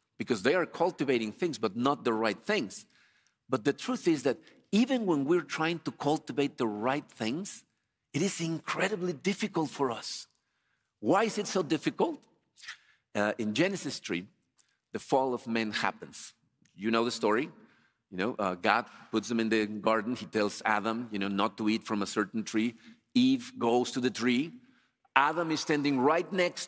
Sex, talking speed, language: male, 180 wpm, English